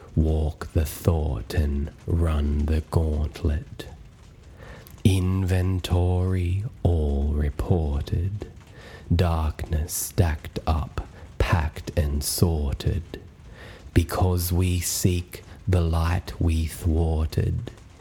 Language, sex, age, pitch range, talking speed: English, male, 30-49, 80-90 Hz, 75 wpm